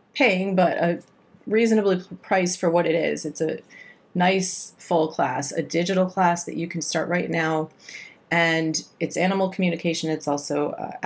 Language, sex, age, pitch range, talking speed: English, female, 30-49, 165-195 Hz, 165 wpm